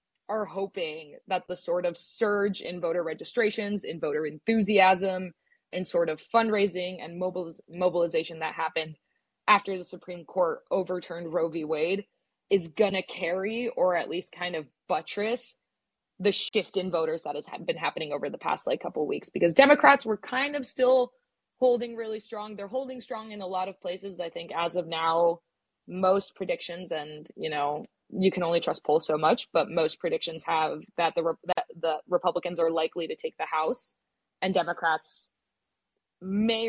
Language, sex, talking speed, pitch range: English, female, 175 wpm, 170-225 Hz